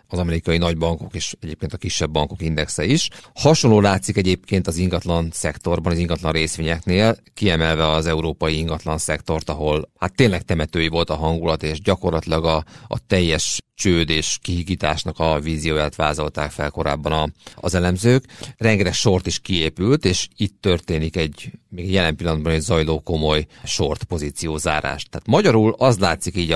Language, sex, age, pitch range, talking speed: Hungarian, male, 40-59, 80-100 Hz, 150 wpm